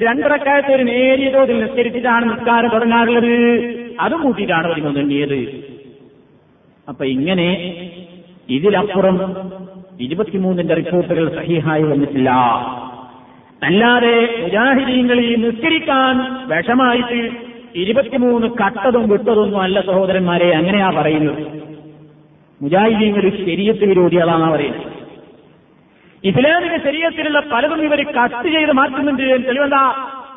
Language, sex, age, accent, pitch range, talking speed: Malayalam, male, 50-69, native, 190-255 Hz, 75 wpm